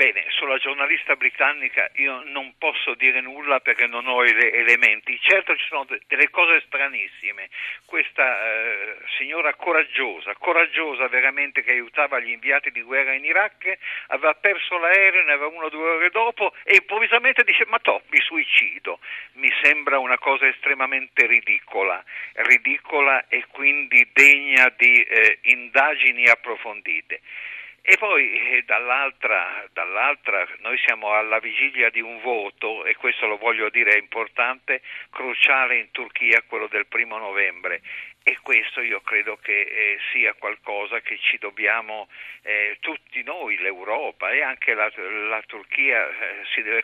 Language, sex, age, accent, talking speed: Italian, male, 50-69, native, 145 wpm